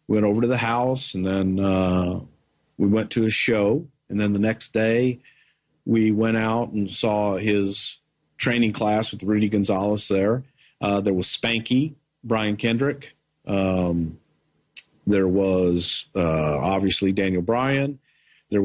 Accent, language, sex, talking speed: American, English, male, 145 wpm